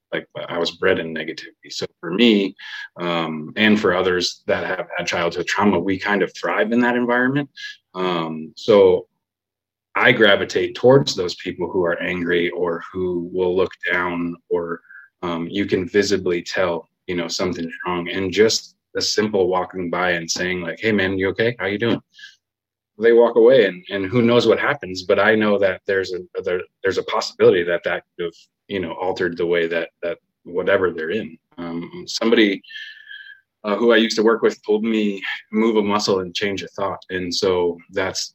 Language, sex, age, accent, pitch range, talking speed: English, male, 20-39, American, 90-120 Hz, 185 wpm